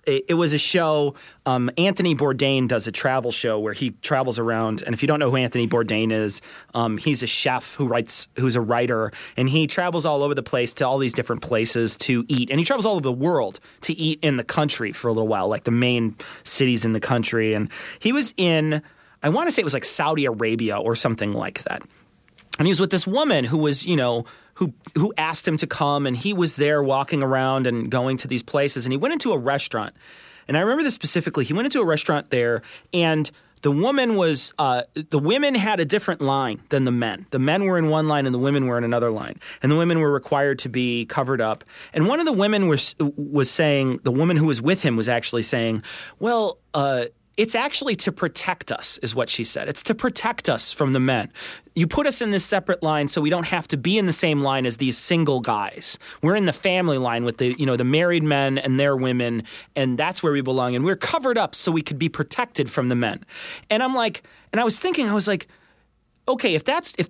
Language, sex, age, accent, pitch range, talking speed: English, male, 30-49, American, 125-175 Hz, 235 wpm